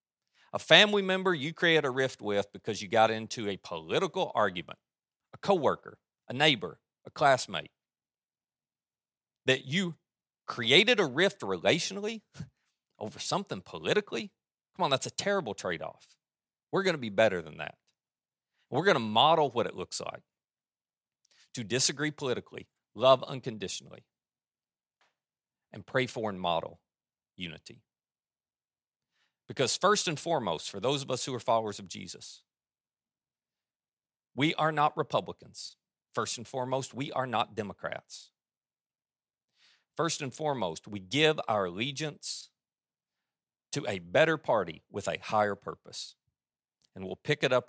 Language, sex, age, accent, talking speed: English, male, 40-59, American, 135 wpm